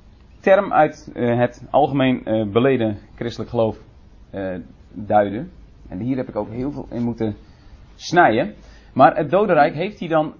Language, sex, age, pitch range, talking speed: Dutch, male, 30-49, 110-140 Hz, 140 wpm